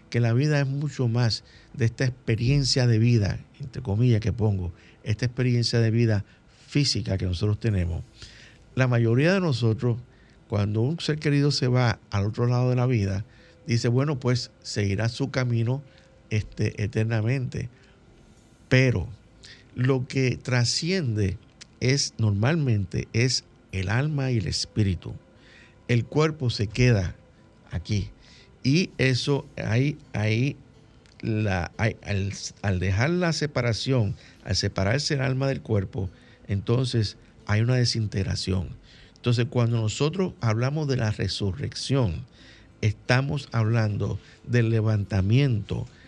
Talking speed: 120 wpm